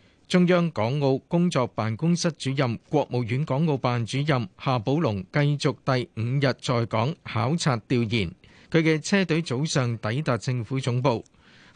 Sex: male